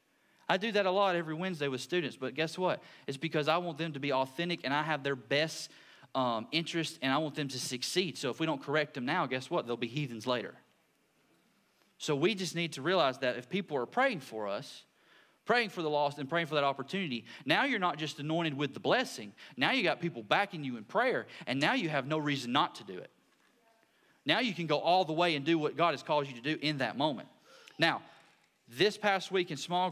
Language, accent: English, American